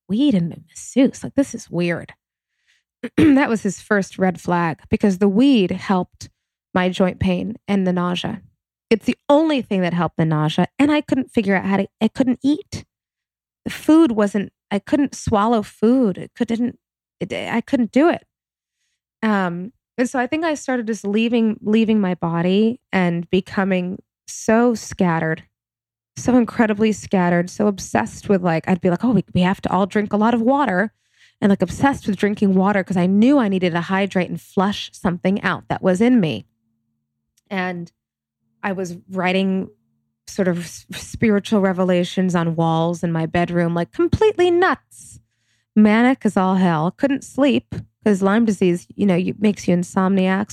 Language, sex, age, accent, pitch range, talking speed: English, female, 20-39, American, 175-225 Hz, 170 wpm